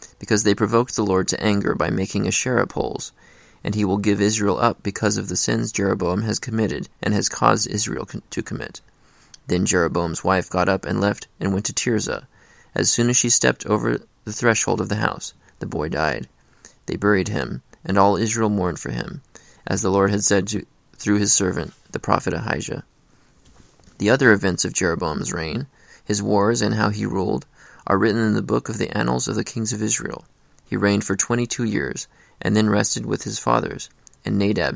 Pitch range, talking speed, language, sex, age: 95-110 Hz, 195 wpm, English, male, 20-39